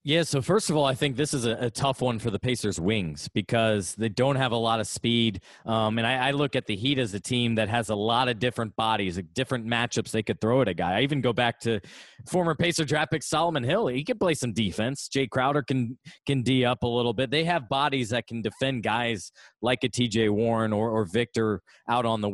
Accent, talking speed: American, 255 wpm